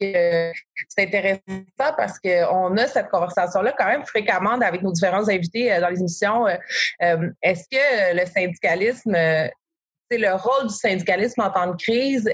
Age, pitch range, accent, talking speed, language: 30-49, 175-205 Hz, Canadian, 150 wpm, French